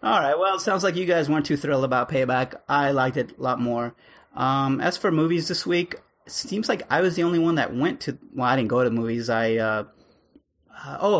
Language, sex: English, male